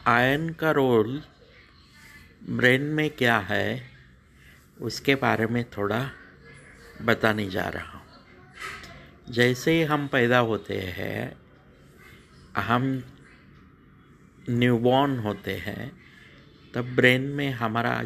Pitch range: 110-135 Hz